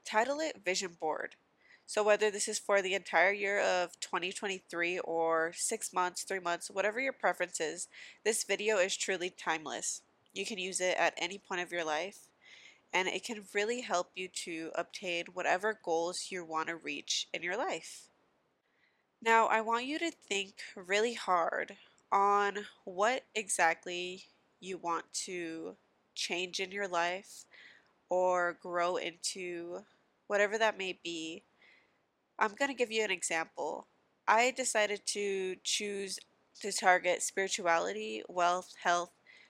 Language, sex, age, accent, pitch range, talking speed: English, female, 20-39, American, 175-210 Hz, 145 wpm